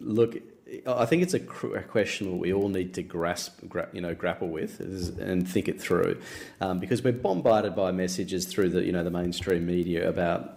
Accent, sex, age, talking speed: Australian, male, 40-59, 185 wpm